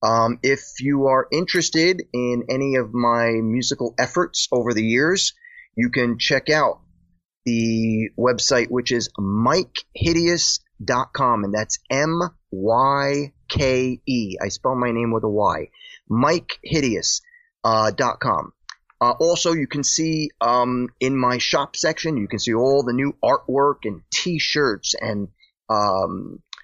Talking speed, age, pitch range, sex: 130 wpm, 30-49, 115-150 Hz, male